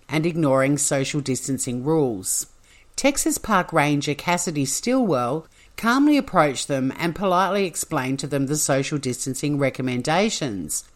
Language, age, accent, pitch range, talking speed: English, 50-69, Australian, 140-190 Hz, 120 wpm